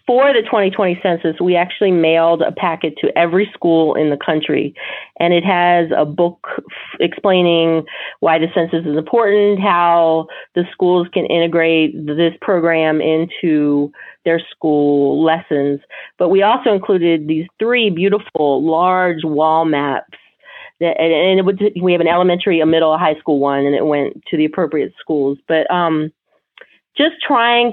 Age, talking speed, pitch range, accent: 30-49, 165 wpm, 160-200 Hz, American